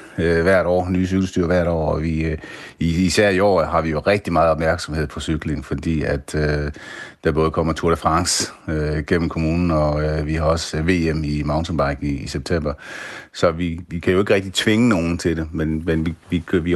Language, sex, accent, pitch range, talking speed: Danish, male, native, 75-85 Hz, 210 wpm